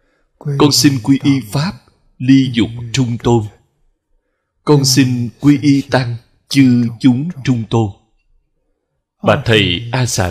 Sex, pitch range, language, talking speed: male, 115-140 Hz, Vietnamese, 130 wpm